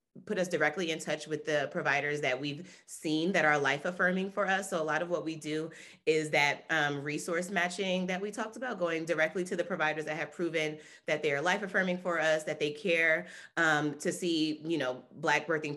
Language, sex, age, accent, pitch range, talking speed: English, female, 30-49, American, 145-180 Hz, 215 wpm